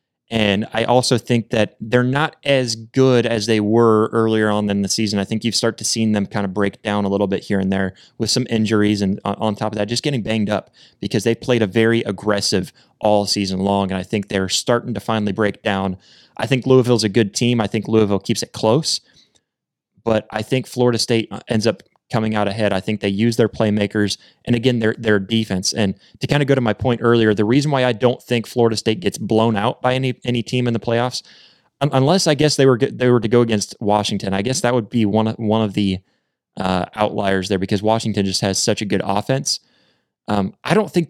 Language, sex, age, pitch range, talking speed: English, male, 20-39, 100-120 Hz, 235 wpm